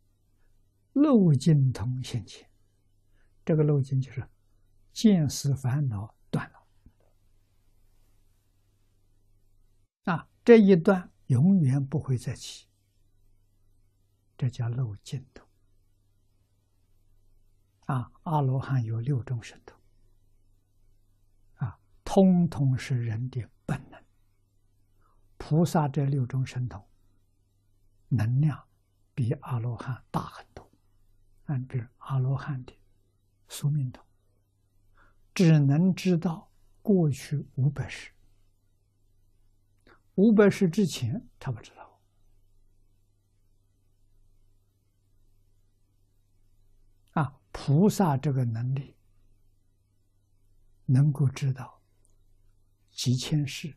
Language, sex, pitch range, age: Chinese, male, 100-130 Hz, 60-79